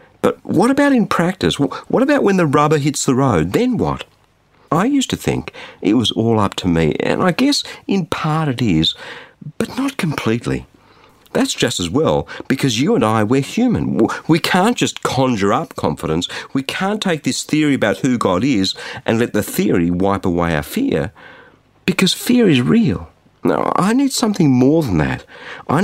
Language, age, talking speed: English, 50-69, 185 wpm